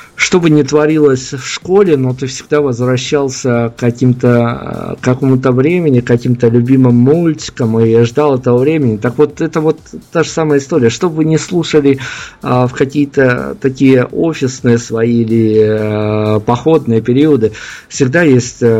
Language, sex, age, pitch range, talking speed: Russian, male, 50-69, 115-145 Hz, 150 wpm